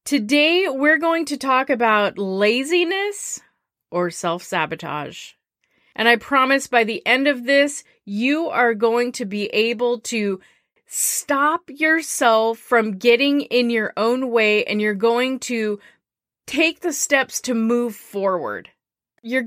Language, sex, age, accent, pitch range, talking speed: English, female, 30-49, American, 205-265 Hz, 135 wpm